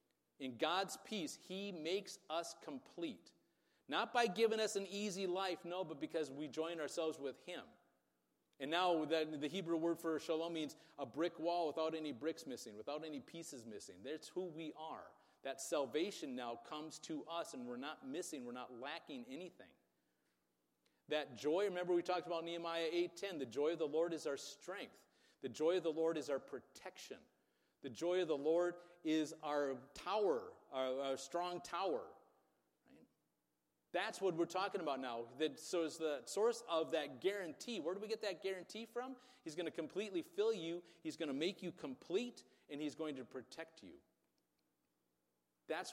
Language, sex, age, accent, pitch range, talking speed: English, male, 40-59, American, 150-190 Hz, 180 wpm